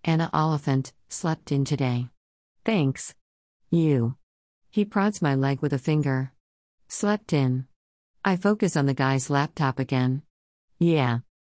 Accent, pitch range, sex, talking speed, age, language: American, 130-170 Hz, female, 125 wpm, 50-69, English